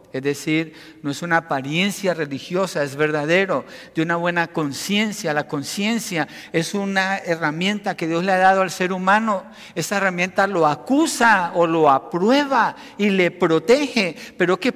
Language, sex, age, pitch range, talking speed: Spanish, male, 60-79, 170-235 Hz, 155 wpm